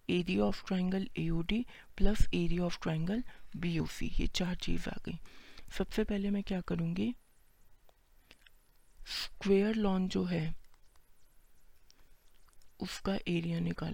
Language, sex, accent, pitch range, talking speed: Hindi, female, native, 165-195 Hz, 85 wpm